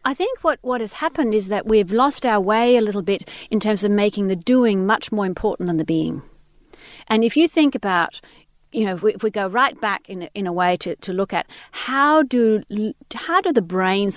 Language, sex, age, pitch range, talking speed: English, female, 40-59, 185-245 Hz, 235 wpm